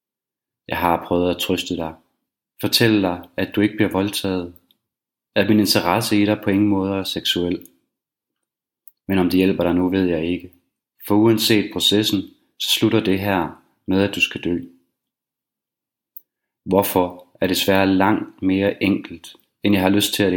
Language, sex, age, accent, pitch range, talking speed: Danish, male, 30-49, native, 90-105 Hz, 170 wpm